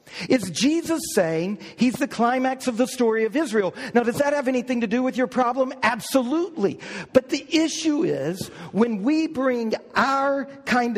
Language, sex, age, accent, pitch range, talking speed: English, male, 50-69, American, 185-255 Hz, 170 wpm